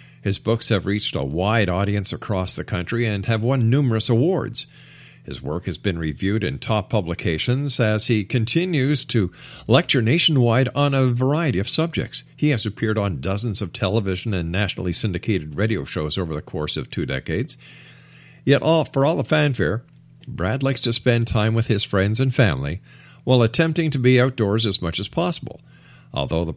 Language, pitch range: English, 100-135 Hz